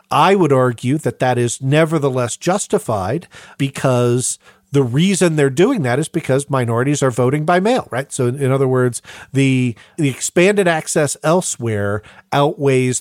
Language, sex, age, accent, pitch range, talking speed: English, male, 40-59, American, 125-165 Hz, 150 wpm